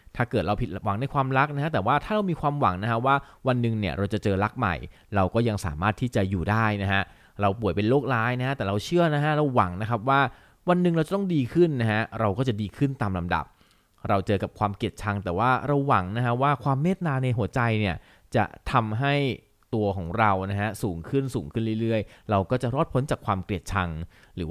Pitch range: 95-130 Hz